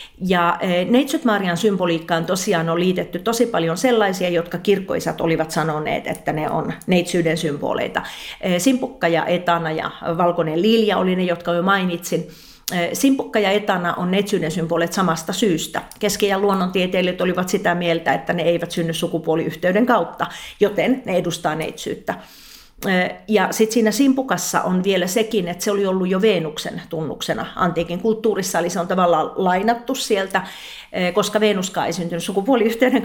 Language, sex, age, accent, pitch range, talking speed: Finnish, female, 40-59, native, 170-210 Hz, 145 wpm